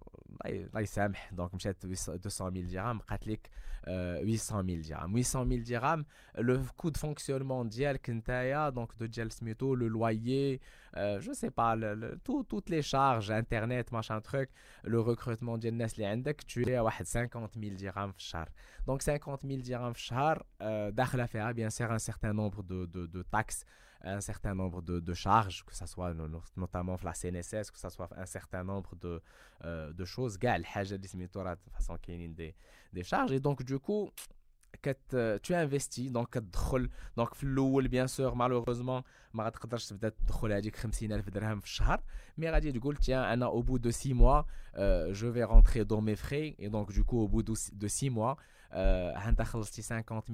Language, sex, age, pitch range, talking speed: French, male, 20-39, 100-125 Hz, 160 wpm